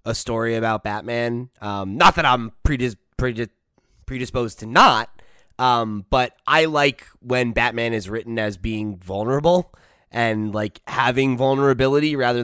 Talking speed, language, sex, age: 140 wpm, English, male, 20-39